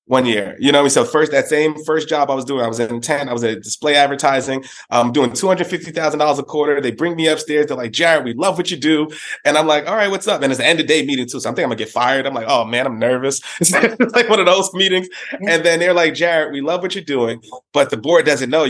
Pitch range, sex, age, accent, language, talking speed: 130-160 Hz, male, 20-39, American, English, 300 wpm